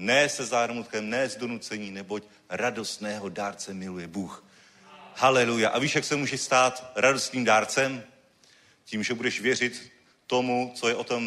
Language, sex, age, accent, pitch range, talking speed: Czech, male, 40-59, native, 120-155 Hz, 155 wpm